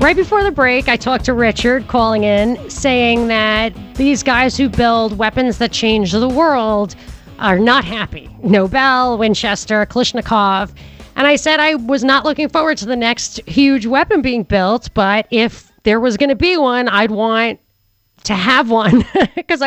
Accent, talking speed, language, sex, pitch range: American, 170 wpm, English, female, 205-255 Hz